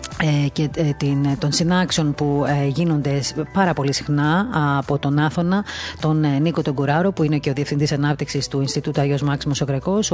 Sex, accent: female, native